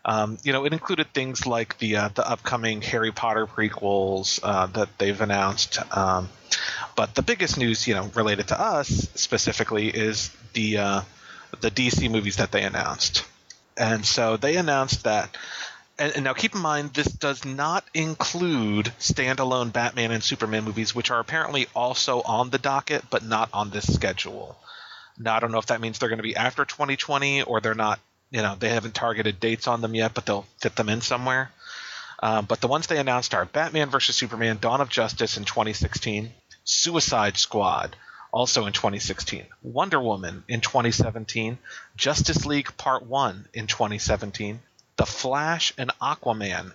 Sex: male